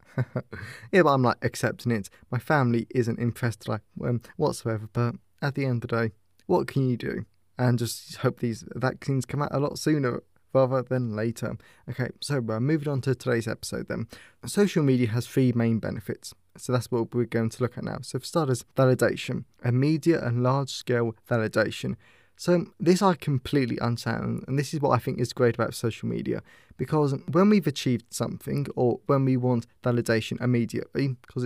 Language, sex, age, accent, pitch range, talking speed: English, male, 20-39, British, 120-140 Hz, 180 wpm